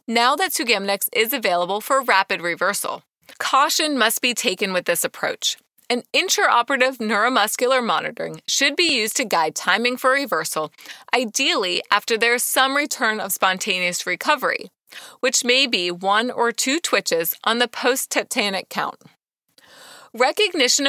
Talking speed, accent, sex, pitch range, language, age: 140 wpm, American, female, 200-275 Hz, English, 30-49